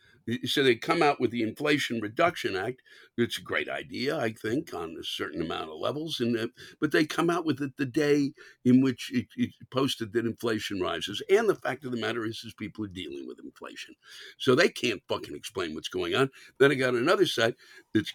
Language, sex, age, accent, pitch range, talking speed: English, male, 60-79, American, 105-140 Hz, 220 wpm